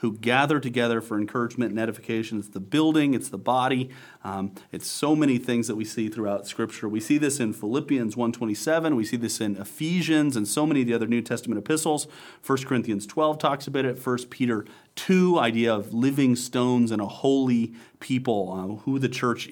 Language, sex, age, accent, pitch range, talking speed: English, male, 40-59, American, 110-135 Hz, 195 wpm